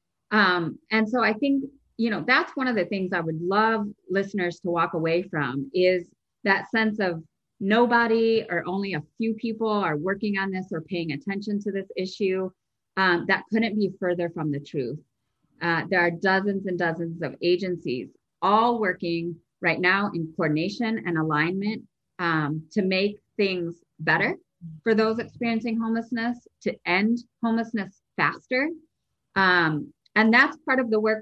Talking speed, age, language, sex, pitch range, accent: 160 wpm, 30-49, English, female, 170-225 Hz, American